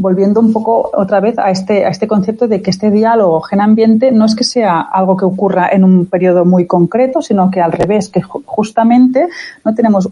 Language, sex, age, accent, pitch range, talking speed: Spanish, female, 30-49, Spanish, 180-230 Hz, 210 wpm